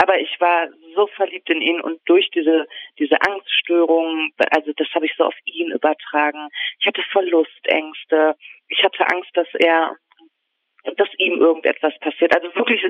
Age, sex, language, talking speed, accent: 40-59, female, German, 160 wpm, German